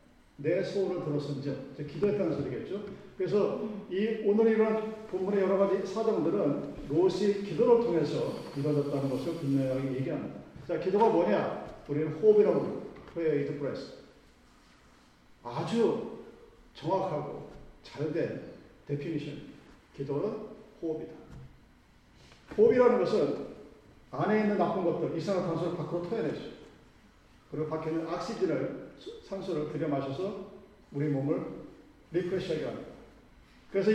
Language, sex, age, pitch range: Korean, male, 40-59, 155-220 Hz